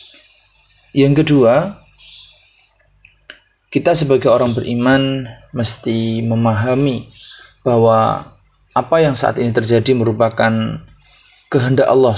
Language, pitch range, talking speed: Indonesian, 115-135 Hz, 85 wpm